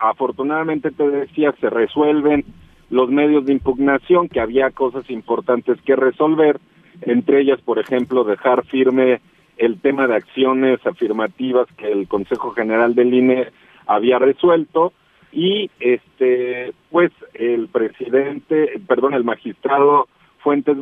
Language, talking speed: Spanish, 125 wpm